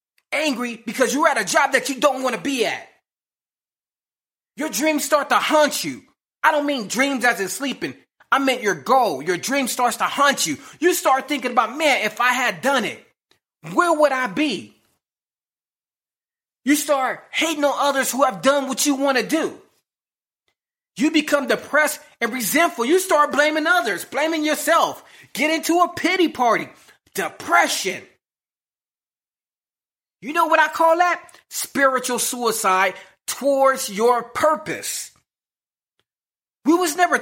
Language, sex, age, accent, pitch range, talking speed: English, male, 30-49, American, 235-305 Hz, 150 wpm